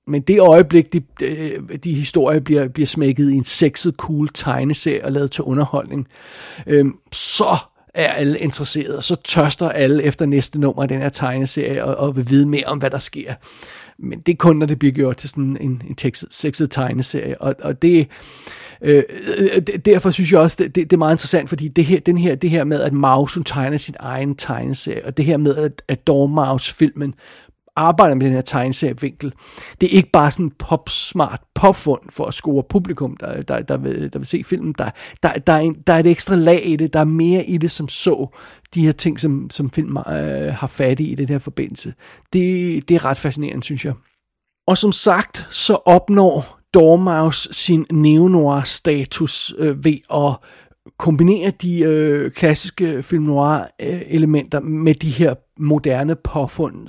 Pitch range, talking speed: 140-170 Hz, 190 wpm